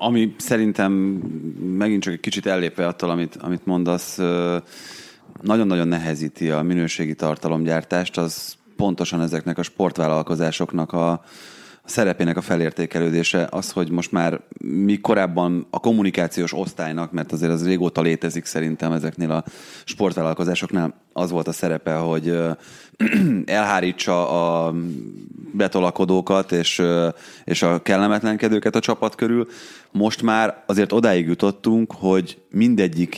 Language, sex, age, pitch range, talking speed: Hungarian, male, 30-49, 85-100 Hz, 115 wpm